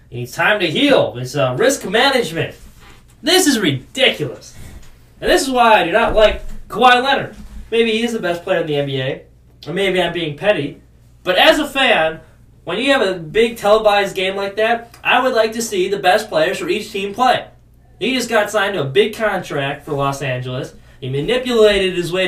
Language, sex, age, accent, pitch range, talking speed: English, male, 20-39, American, 140-230 Hz, 200 wpm